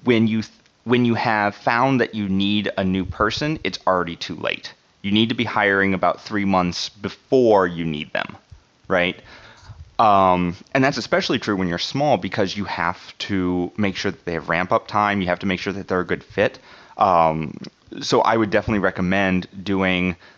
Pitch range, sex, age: 90-105 Hz, male, 30-49